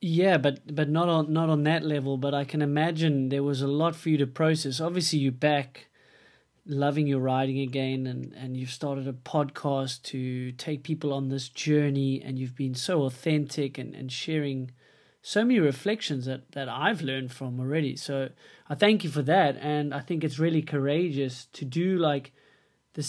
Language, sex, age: English, male, 30-49